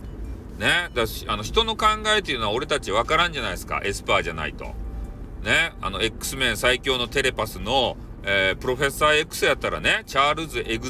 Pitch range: 85-140 Hz